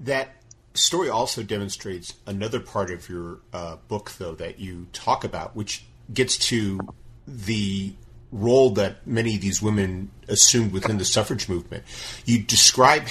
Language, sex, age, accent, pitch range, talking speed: English, male, 40-59, American, 100-120 Hz, 145 wpm